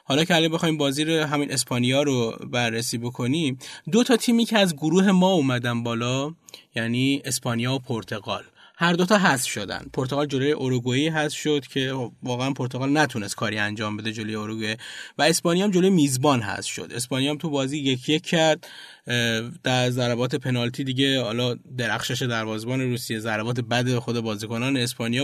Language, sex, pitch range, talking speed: Persian, male, 120-150 Hz, 160 wpm